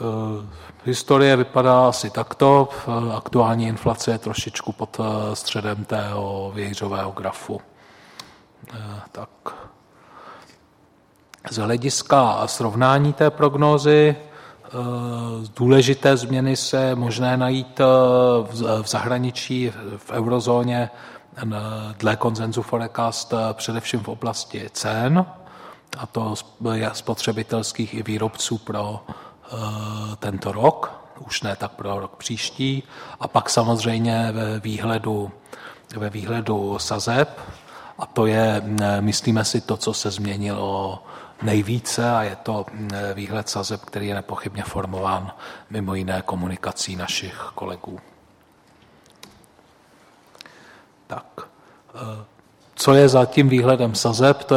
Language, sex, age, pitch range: Czech, male, 40-59, 105-125 Hz